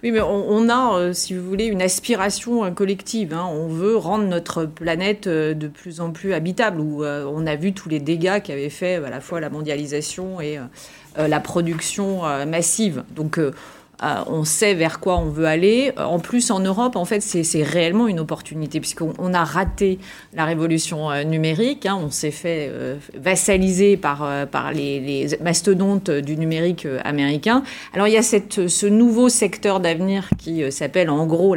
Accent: French